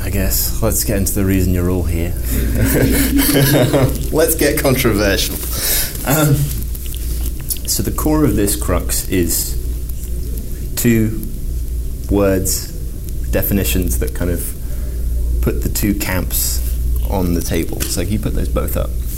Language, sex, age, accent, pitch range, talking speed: English, male, 20-39, British, 65-105 Hz, 125 wpm